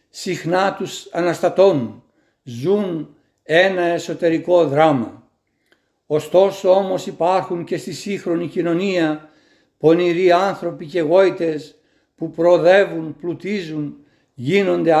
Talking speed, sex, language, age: 85 wpm, male, Greek, 60-79